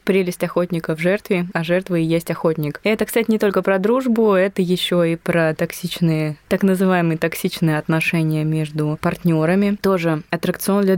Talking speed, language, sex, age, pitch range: 160 wpm, Russian, female, 20-39, 170-205 Hz